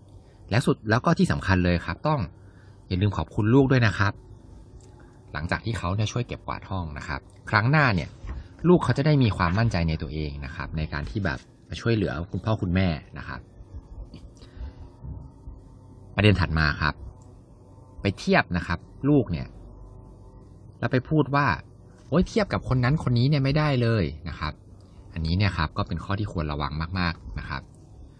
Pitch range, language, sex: 90-120 Hz, English, male